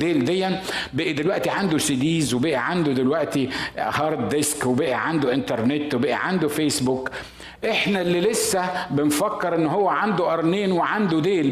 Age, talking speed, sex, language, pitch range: 50-69, 140 wpm, male, Arabic, 145-195 Hz